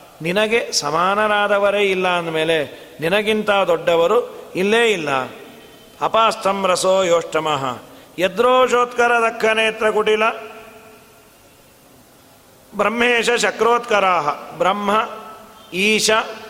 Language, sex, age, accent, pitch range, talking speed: Kannada, male, 40-59, native, 190-230 Hz, 65 wpm